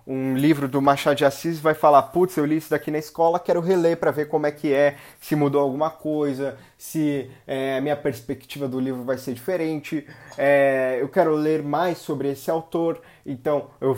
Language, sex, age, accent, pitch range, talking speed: Portuguese, male, 20-39, Brazilian, 140-180 Hz, 200 wpm